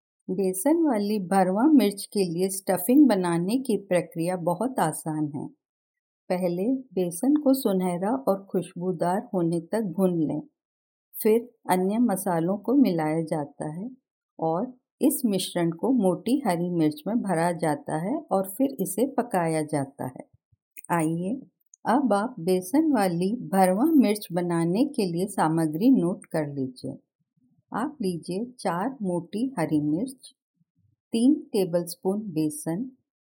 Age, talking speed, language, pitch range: 50-69, 125 wpm, Hindi, 170-245 Hz